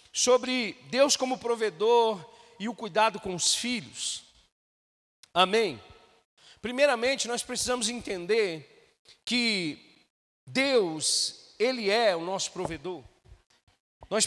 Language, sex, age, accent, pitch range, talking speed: Portuguese, male, 40-59, Brazilian, 210-255 Hz, 95 wpm